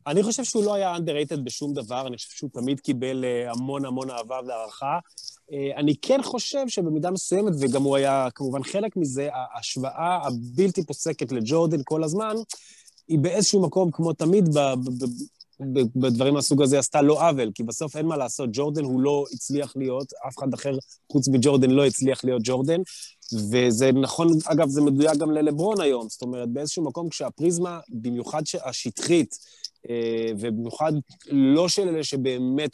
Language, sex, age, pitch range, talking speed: Hebrew, male, 20-39, 125-160 Hz, 160 wpm